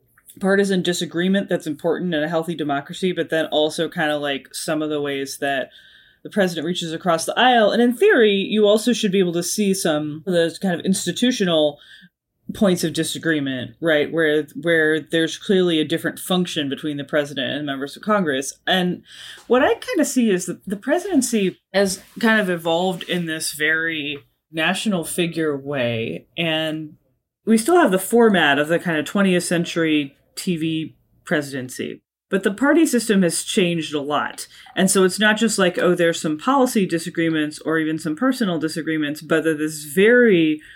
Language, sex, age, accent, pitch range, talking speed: English, female, 20-39, American, 155-195 Hz, 180 wpm